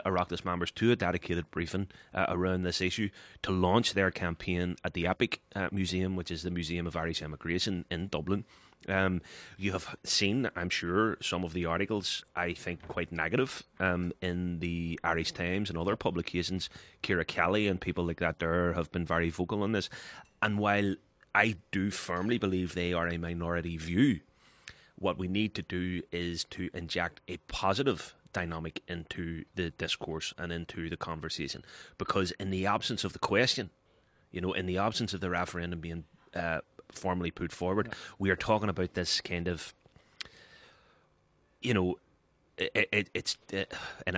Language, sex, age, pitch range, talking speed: English, male, 30-49, 85-95 Hz, 170 wpm